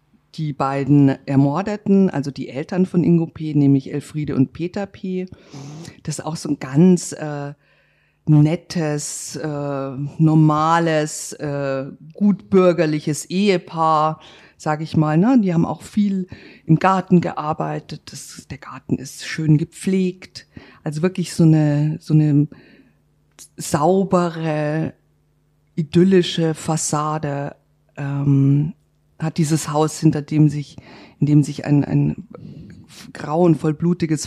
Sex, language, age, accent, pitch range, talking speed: female, German, 50-69, German, 145-175 Hz, 115 wpm